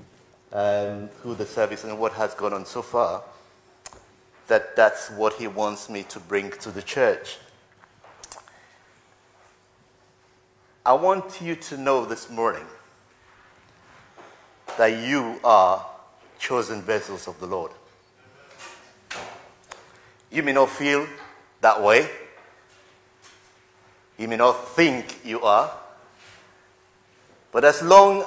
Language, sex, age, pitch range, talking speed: English, male, 50-69, 115-160 Hz, 110 wpm